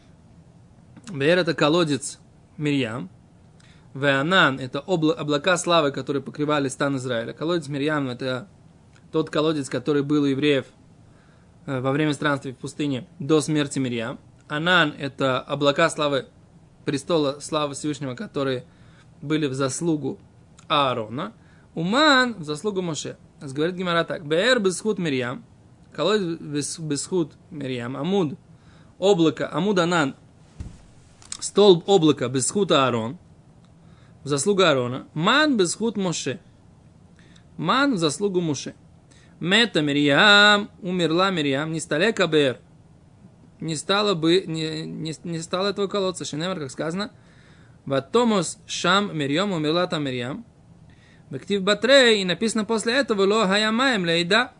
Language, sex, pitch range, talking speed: Russian, male, 140-185 Hz, 120 wpm